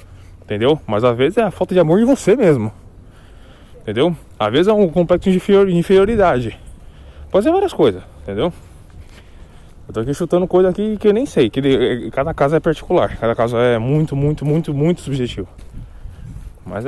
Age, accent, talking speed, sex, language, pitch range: 20-39, Brazilian, 175 wpm, male, Portuguese, 100-165 Hz